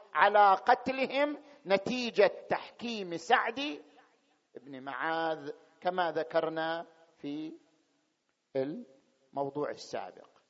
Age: 50-69